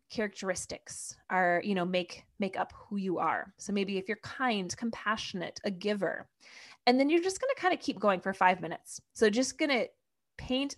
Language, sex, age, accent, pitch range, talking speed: English, female, 20-39, American, 190-240 Hz, 200 wpm